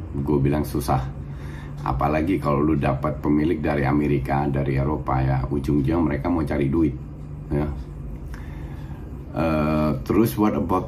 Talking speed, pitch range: 125 wpm, 70-75 Hz